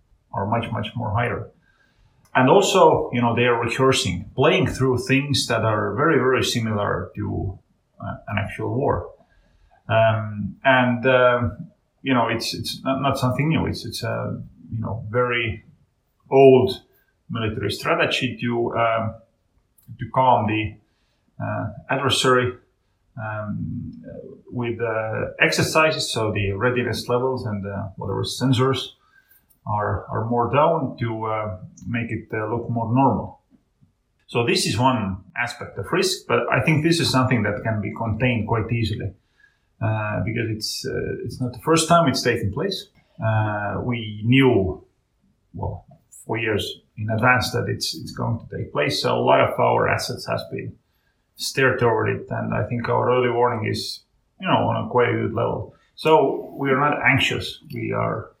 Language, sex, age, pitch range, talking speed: English, male, 30-49, 110-125 Hz, 160 wpm